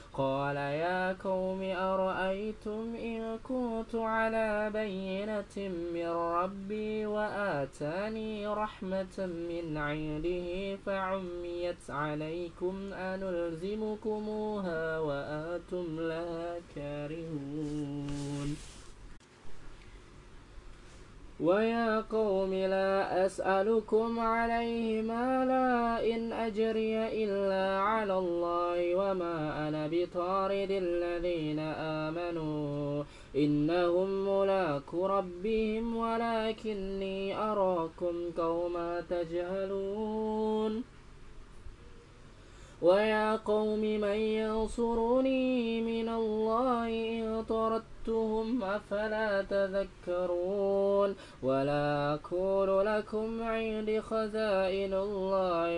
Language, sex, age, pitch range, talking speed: Indonesian, male, 20-39, 165-215 Hz, 60 wpm